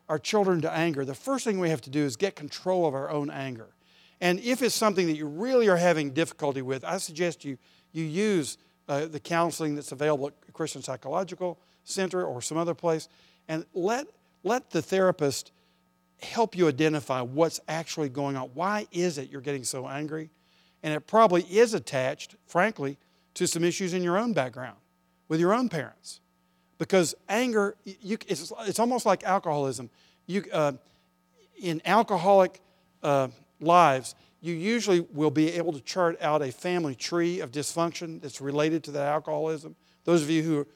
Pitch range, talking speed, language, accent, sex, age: 140-180 Hz, 170 wpm, English, American, male, 50-69